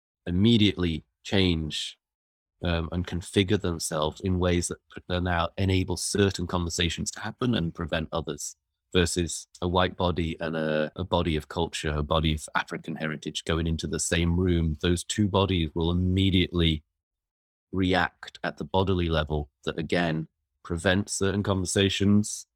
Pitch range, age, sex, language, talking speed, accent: 80-95 Hz, 30-49, male, English, 140 wpm, British